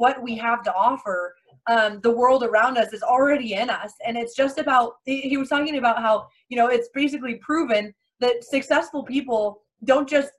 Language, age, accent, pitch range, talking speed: English, 20-39, American, 230-280 Hz, 195 wpm